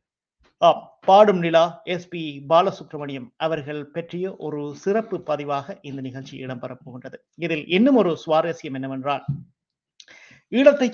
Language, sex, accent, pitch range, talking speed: Tamil, male, native, 150-195 Hz, 110 wpm